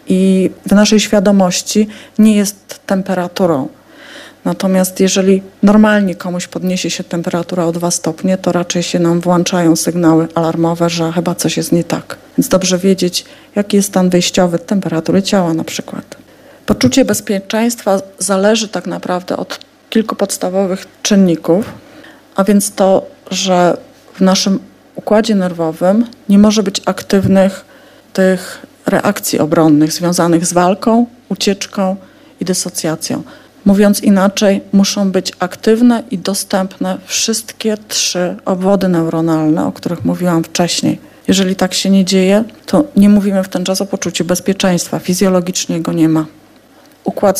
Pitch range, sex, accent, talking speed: 180-205 Hz, female, native, 135 wpm